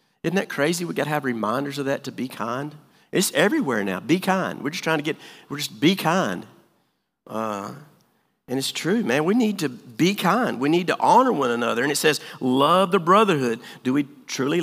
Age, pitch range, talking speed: 50-69, 125-170 Hz, 215 wpm